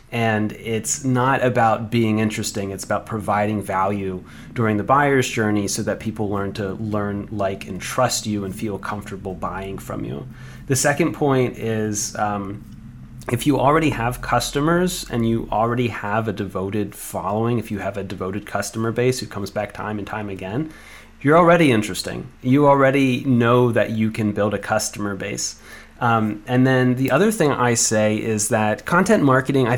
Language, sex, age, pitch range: English, male, 30-49, 105-125 Hz